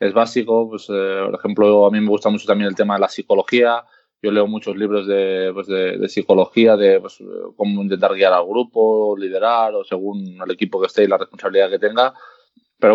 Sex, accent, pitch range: male, Spanish, 105-125 Hz